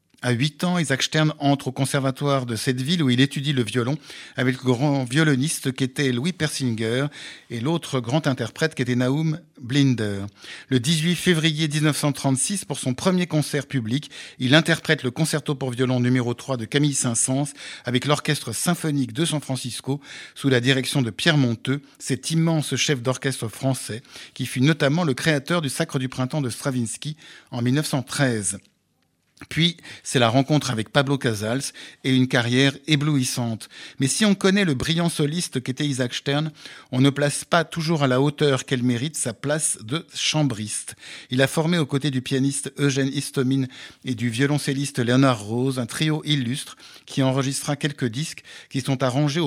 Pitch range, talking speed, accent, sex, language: 125-150 Hz, 170 wpm, French, male, French